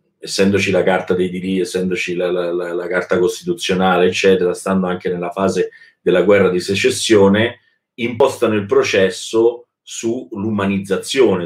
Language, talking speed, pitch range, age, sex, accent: Italian, 125 wpm, 95-130 Hz, 30-49, male, native